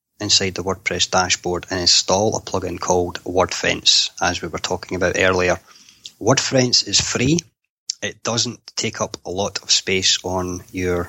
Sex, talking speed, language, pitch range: male, 155 wpm, English, 90-105 Hz